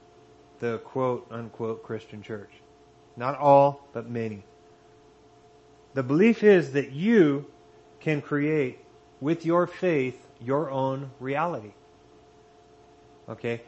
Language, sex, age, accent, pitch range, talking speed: English, male, 30-49, American, 120-160 Hz, 95 wpm